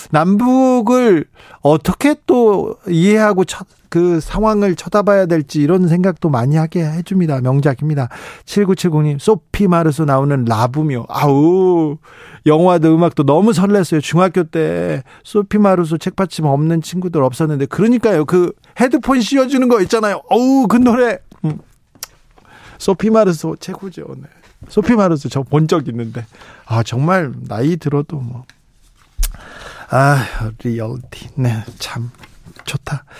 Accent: native